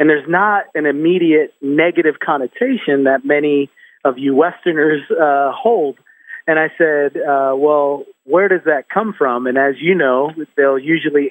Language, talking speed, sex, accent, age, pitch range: English, 160 wpm, male, American, 30-49, 140-170 Hz